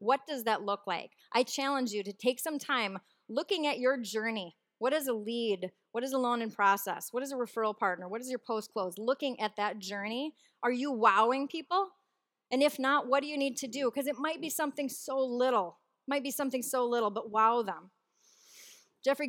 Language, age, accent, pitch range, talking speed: English, 30-49, American, 210-265 Hz, 215 wpm